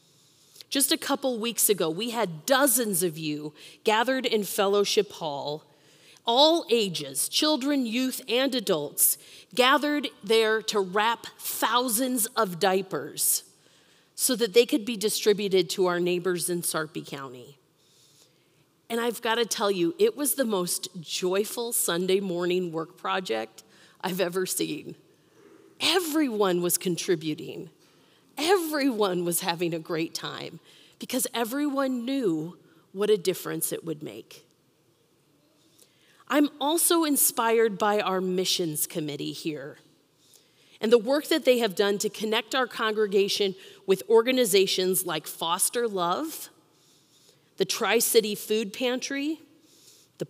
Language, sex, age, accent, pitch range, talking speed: English, female, 40-59, American, 180-255 Hz, 125 wpm